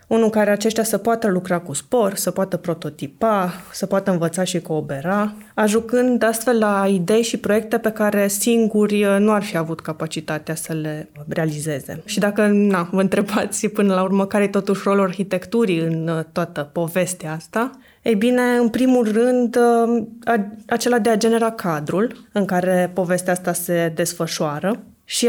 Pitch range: 175-225 Hz